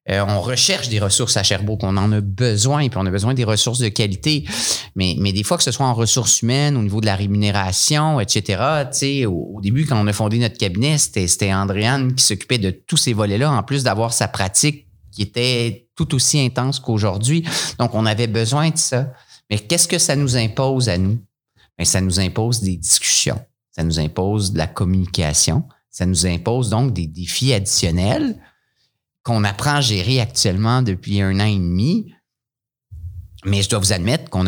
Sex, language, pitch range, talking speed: male, French, 95-125 Hz, 195 wpm